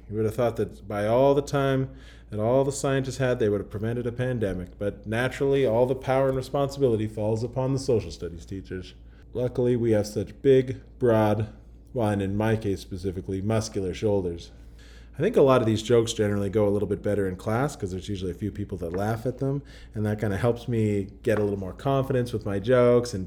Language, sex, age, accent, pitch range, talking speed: English, male, 30-49, American, 95-115 Hz, 225 wpm